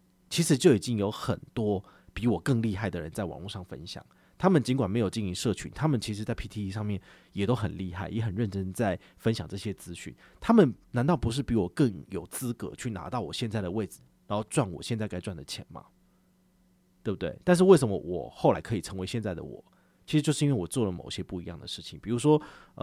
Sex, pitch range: male, 90-125 Hz